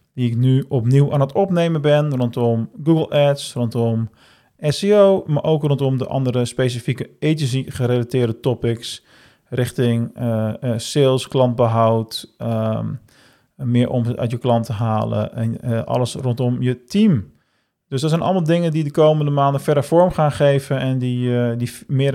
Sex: male